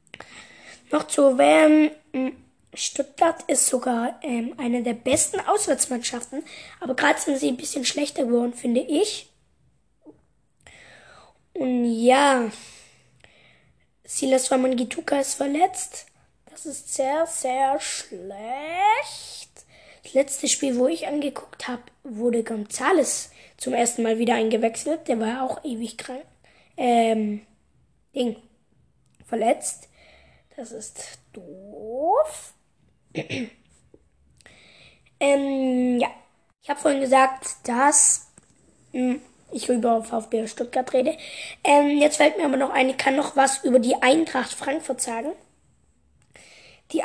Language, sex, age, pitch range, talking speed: German, female, 20-39, 245-295 Hz, 110 wpm